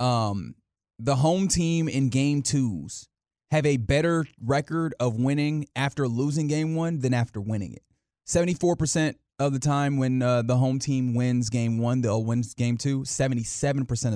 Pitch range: 115-145 Hz